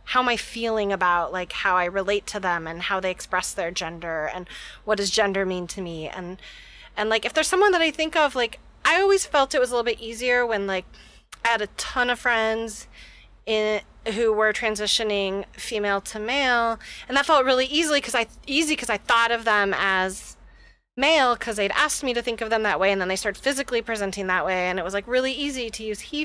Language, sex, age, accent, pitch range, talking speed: English, female, 30-49, American, 190-235 Hz, 225 wpm